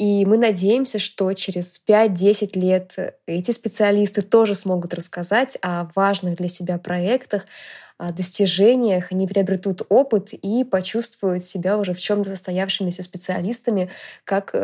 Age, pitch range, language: 20-39, 180-210 Hz, Russian